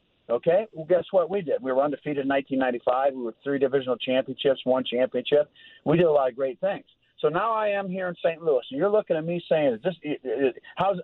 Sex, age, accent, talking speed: male, 50-69, American, 240 wpm